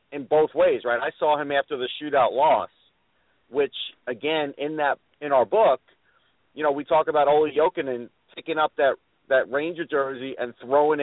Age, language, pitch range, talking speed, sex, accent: 40-59, English, 130-170 Hz, 180 wpm, male, American